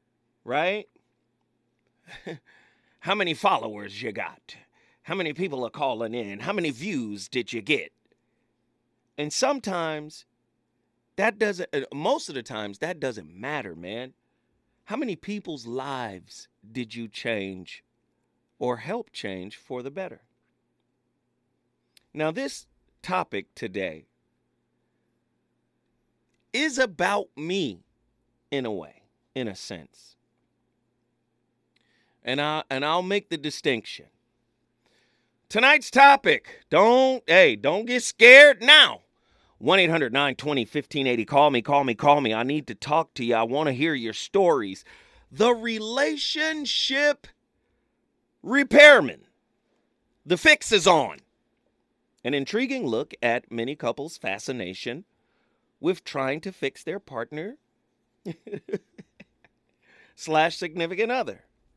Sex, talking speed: male, 110 wpm